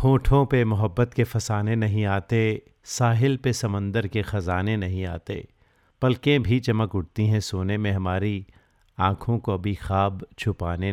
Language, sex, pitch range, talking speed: Hindi, male, 95-110 Hz, 150 wpm